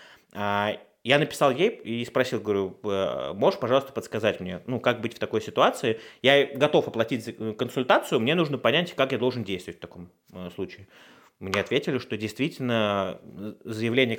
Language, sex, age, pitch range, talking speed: Russian, male, 30-49, 100-125 Hz, 150 wpm